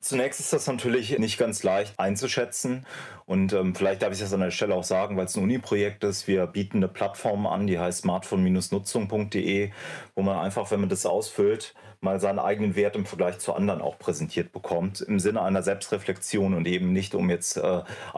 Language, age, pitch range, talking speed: German, 30-49, 95-110 Hz, 200 wpm